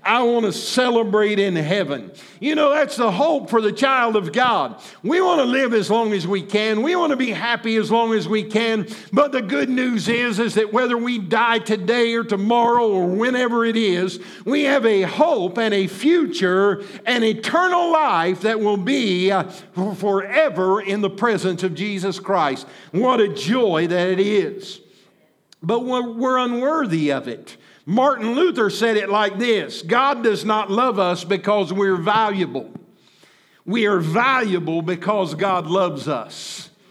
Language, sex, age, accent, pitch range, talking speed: English, male, 50-69, American, 190-235 Hz, 170 wpm